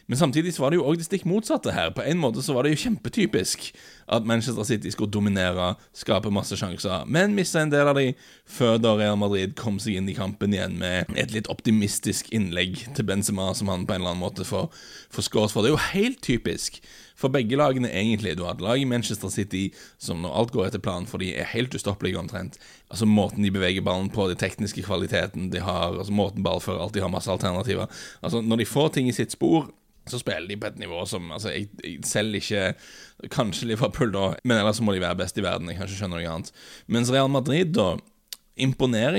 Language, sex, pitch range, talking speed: English, male, 95-120 Hz, 220 wpm